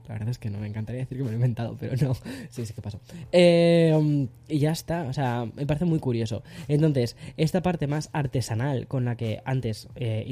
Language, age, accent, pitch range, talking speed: Spanish, 10-29, Spanish, 115-140 Hz, 225 wpm